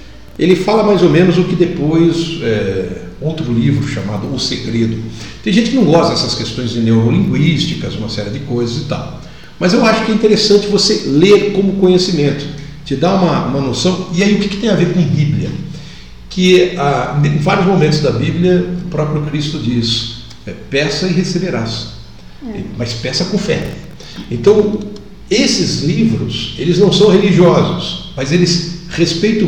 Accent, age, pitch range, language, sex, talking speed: Brazilian, 60-79, 140-180 Hz, Portuguese, male, 165 wpm